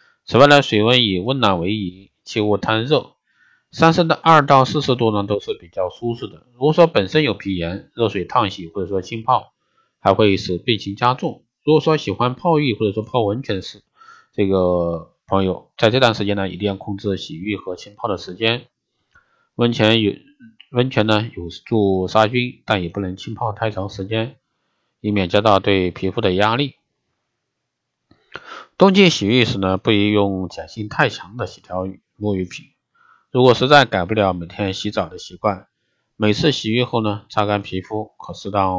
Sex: male